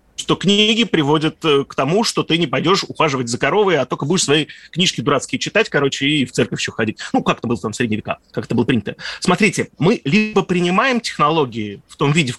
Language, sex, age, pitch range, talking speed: Russian, male, 20-39, 125-175 Hz, 225 wpm